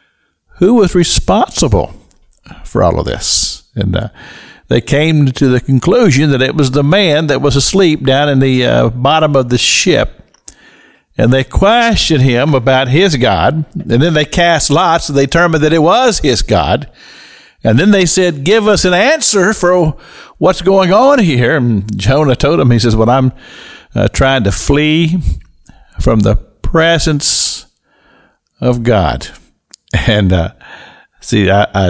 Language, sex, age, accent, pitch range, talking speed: English, male, 50-69, American, 115-170 Hz, 155 wpm